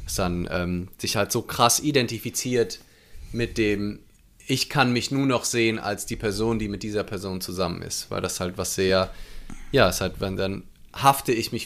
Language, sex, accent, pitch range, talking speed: German, male, German, 100-130 Hz, 195 wpm